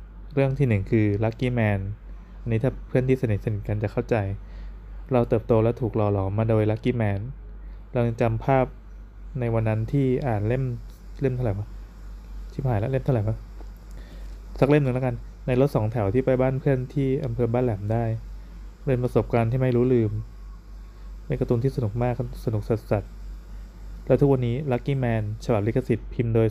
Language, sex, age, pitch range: Thai, male, 20-39, 110-130 Hz